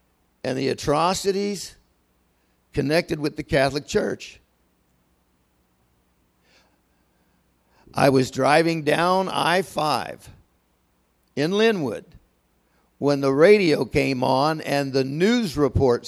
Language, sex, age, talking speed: English, male, 60-79, 90 wpm